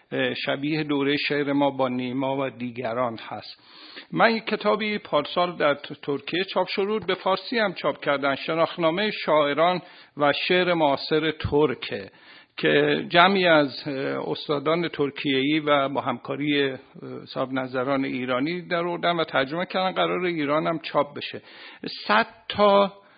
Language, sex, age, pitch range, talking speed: Persian, male, 50-69, 140-180 Hz, 130 wpm